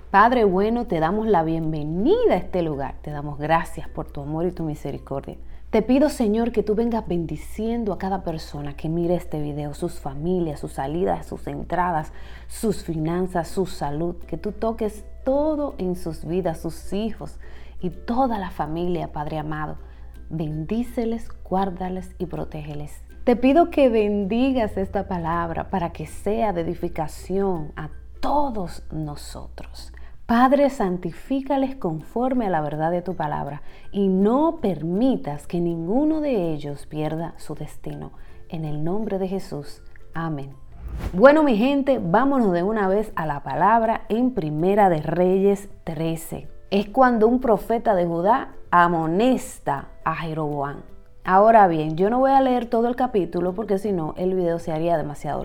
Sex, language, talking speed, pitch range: female, Spanish, 155 wpm, 155-220 Hz